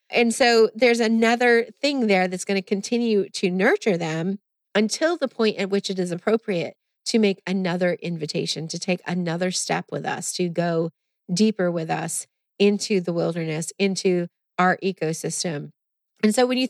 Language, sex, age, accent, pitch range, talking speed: English, female, 30-49, American, 175-220 Hz, 165 wpm